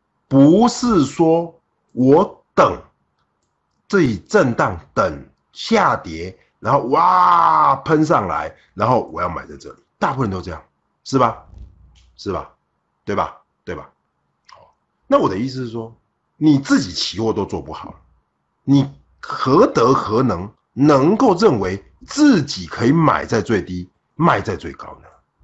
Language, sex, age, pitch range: Chinese, male, 50-69, 80-120 Hz